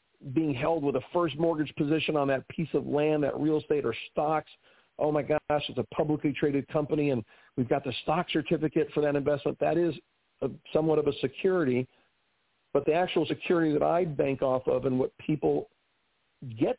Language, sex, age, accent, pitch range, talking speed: English, male, 50-69, American, 140-165 Hz, 190 wpm